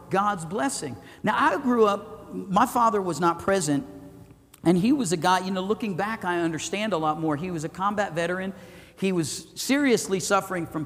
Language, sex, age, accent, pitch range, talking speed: English, male, 50-69, American, 180-235 Hz, 195 wpm